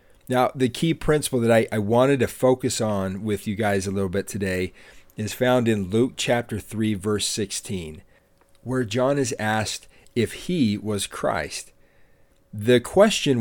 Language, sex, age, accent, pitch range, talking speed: English, male, 40-59, American, 100-130 Hz, 160 wpm